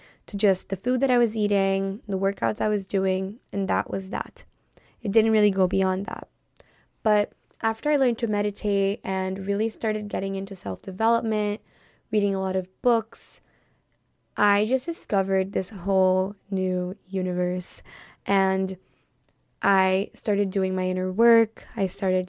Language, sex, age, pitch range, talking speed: English, female, 20-39, 190-220 Hz, 150 wpm